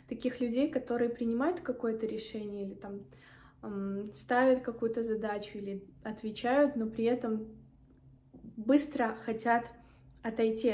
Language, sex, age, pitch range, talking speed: Russian, female, 20-39, 215-245 Hz, 110 wpm